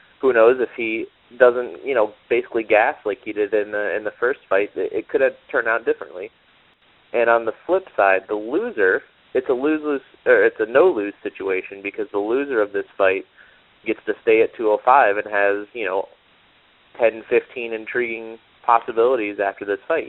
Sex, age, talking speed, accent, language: male, 30-49, 190 wpm, American, English